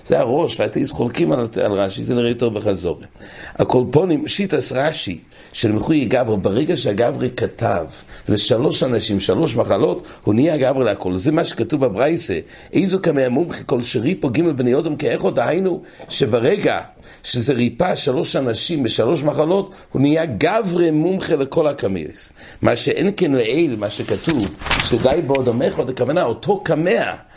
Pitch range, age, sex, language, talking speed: 115-165 Hz, 60-79, male, English, 155 wpm